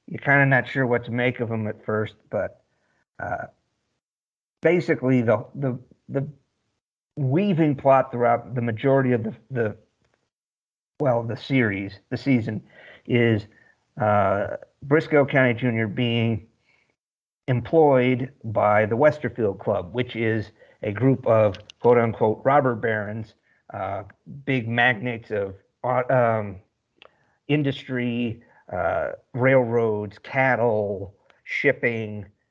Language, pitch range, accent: English, 110-130 Hz, American